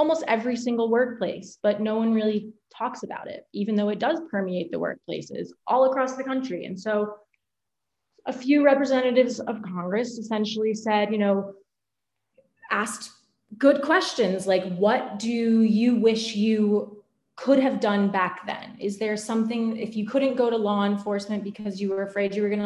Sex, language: female, English